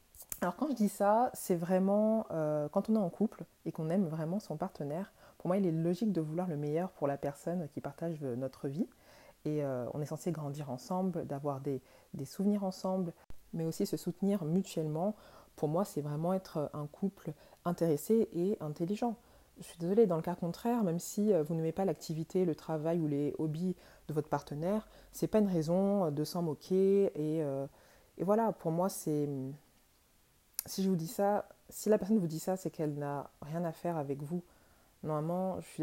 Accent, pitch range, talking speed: French, 150-190 Hz, 200 wpm